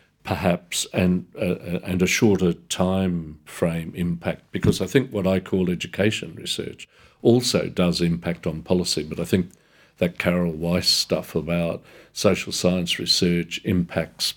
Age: 50-69